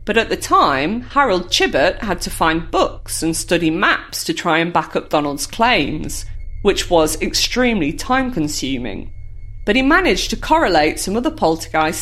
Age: 40-59